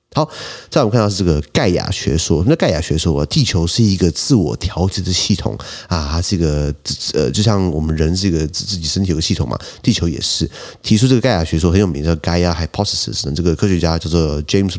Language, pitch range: Chinese, 85-105 Hz